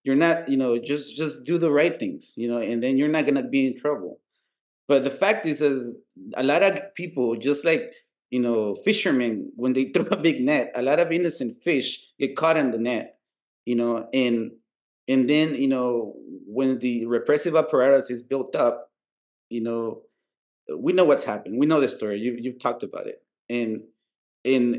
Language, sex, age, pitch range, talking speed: English, male, 30-49, 120-155 Hz, 200 wpm